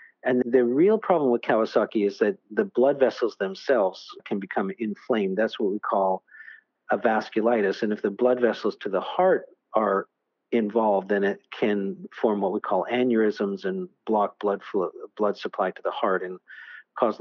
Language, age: English, 50-69